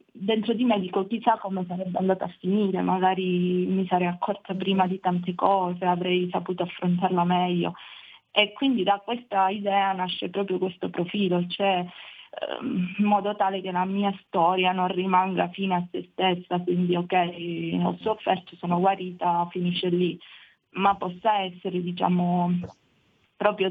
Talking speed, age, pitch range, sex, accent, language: 140 wpm, 20-39, 175-190 Hz, female, native, Italian